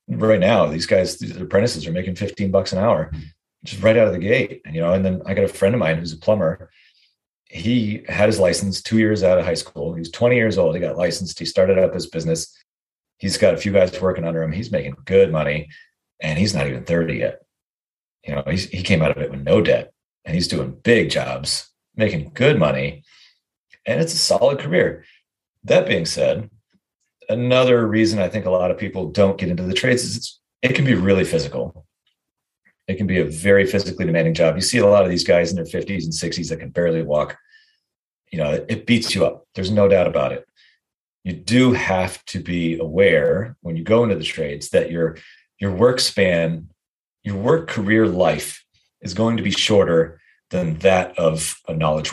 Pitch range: 85-110 Hz